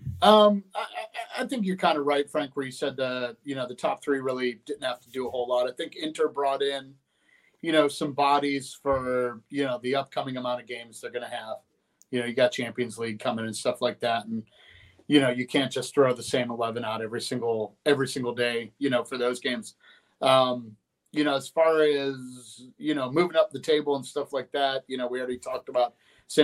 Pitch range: 125-145 Hz